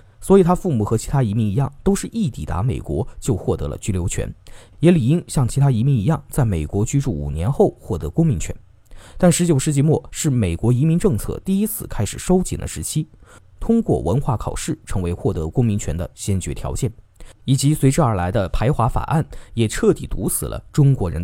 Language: Chinese